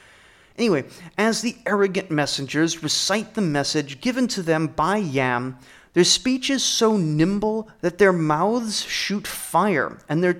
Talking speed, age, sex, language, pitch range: 145 wpm, 30-49, male, English, 145-220 Hz